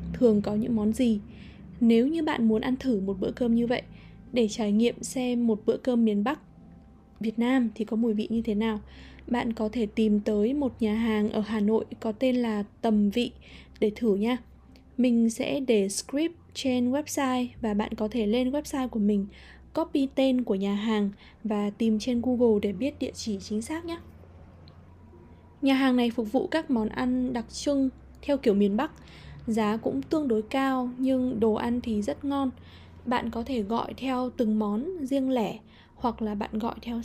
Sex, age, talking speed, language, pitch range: female, 20-39, 200 wpm, English, 215-255 Hz